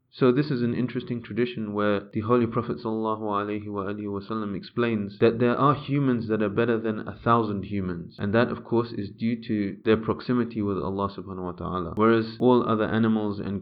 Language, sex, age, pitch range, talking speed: English, male, 20-39, 100-120 Hz, 185 wpm